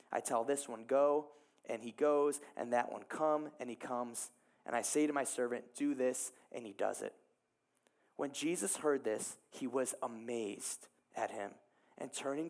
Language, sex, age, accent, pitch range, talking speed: English, male, 20-39, American, 135-200 Hz, 180 wpm